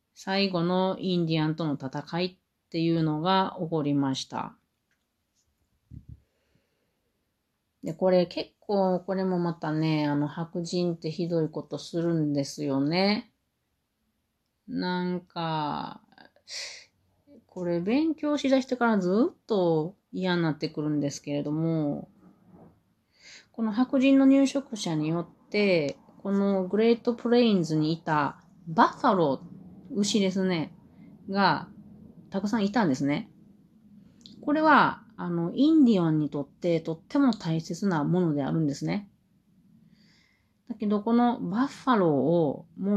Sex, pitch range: female, 155-210 Hz